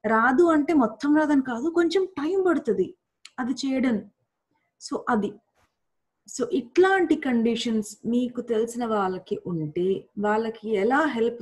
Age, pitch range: 20-39, 205-265 Hz